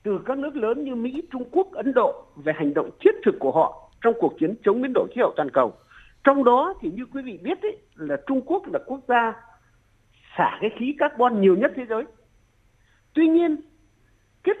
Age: 50-69